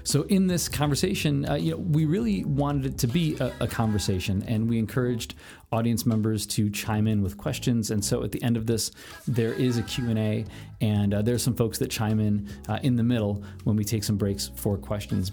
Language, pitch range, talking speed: English, 100-130 Hz, 220 wpm